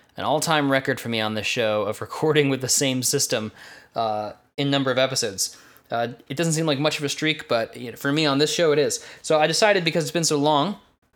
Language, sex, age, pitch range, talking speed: English, male, 10-29, 115-145 Hz, 235 wpm